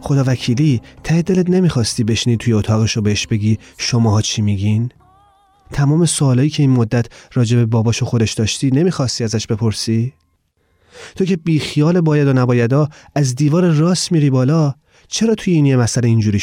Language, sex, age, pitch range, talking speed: Persian, male, 30-49, 100-135 Hz, 160 wpm